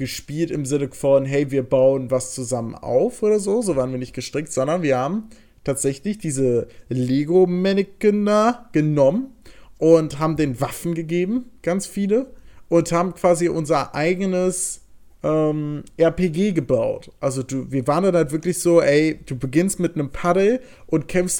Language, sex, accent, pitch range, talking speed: German, male, German, 150-180 Hz, 155 wpm